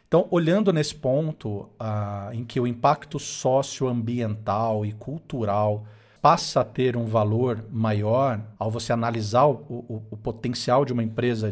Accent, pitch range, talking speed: Brazilian, 115-145 Hz, 145 wpm